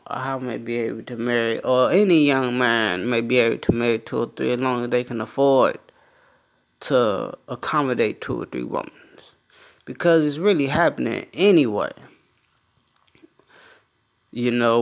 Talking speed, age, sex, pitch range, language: 150 wpm, 20-39, male, 125-160 Hz, English